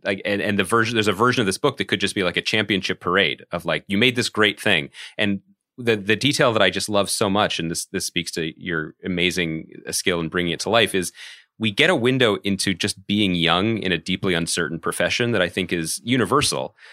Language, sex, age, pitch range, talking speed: English, male, 30-49, 85-105 Hz, 240 wpm